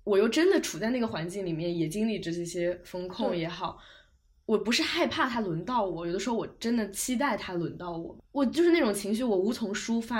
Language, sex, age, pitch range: Chinese, female, 20-39, 180-235 Hz